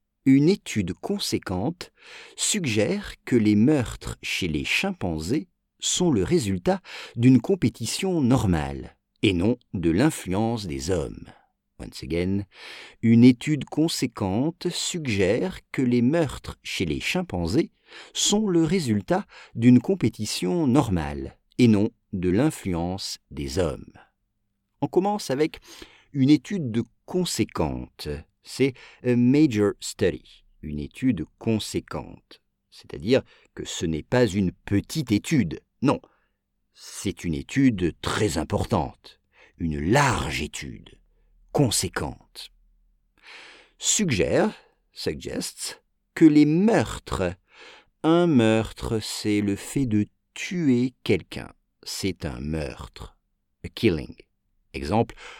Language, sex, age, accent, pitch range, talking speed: English, male, 50-69, French, 95-155 Hz, 110 wpm